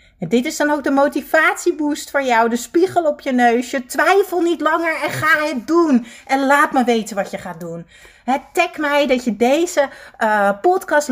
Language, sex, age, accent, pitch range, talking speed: Dutch, female, 30-49, Dutch, 235-310 Hz, 190 wpm